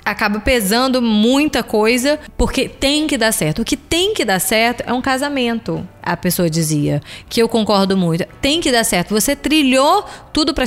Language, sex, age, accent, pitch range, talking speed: Portuguese, female, 20-39, Brazilian, 195-270 Hz, 185 wpm